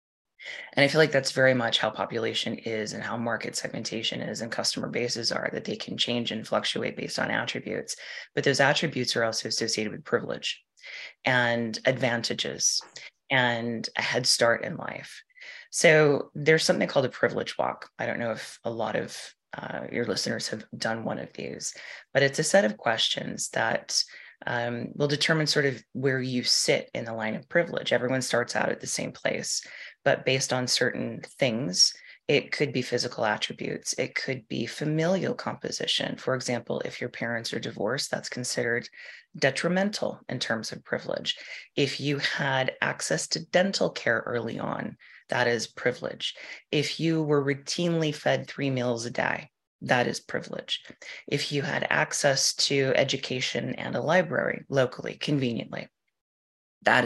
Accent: American